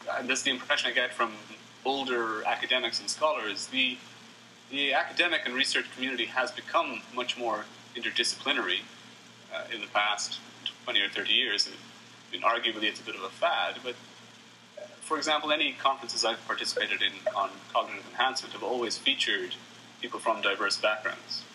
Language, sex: English, male